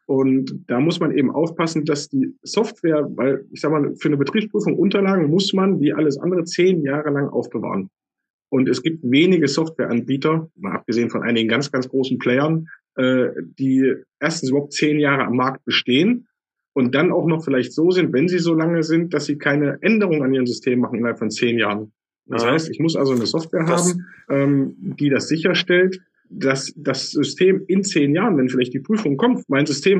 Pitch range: 135-180 Hz